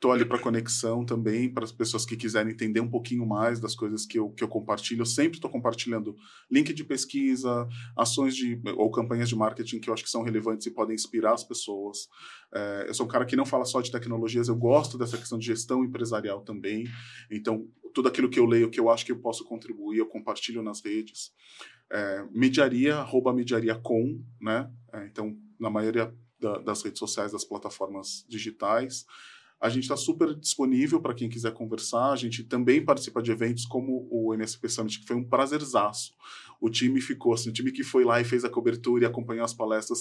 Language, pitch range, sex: Portuguese, 115-130 Hz, male